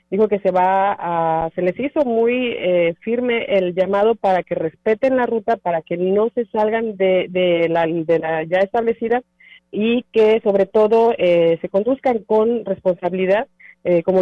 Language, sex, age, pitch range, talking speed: Spanish, female, 40-59, 180-215 Hz, 155 wpm